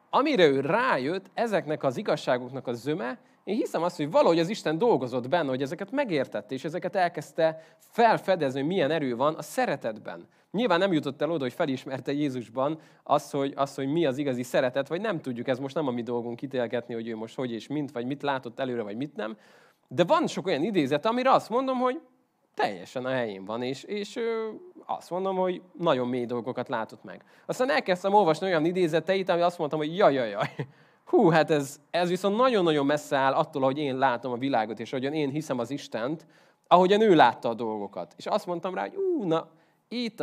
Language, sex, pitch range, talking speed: Hungarian, male, 130-175 Hz, 205 wpm